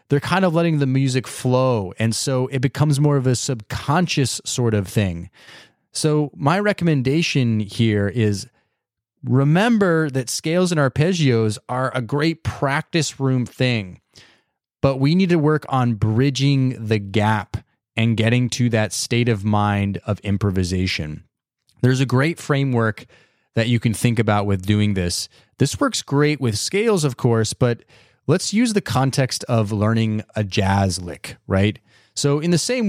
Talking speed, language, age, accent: 155 wpm, English, 20-39, American